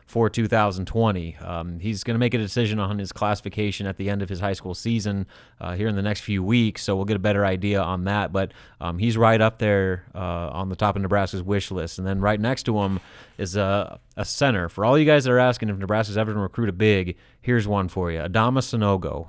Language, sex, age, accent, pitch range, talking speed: English, male, 30-49, American, 100-120 Hz, 245 wpm